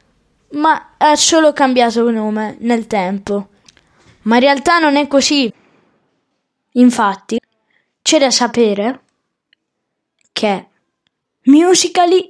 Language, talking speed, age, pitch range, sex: Italian, 100 wpm, 10-29, 240-310 Hz, female